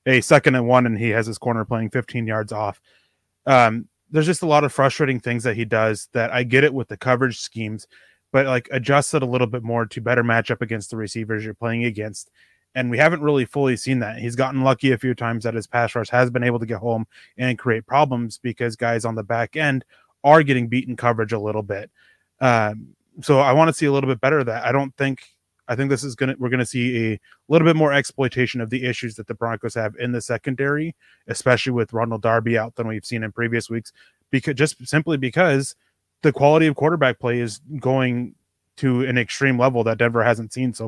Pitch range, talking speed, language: 115-135 Hz, 235 wpm, English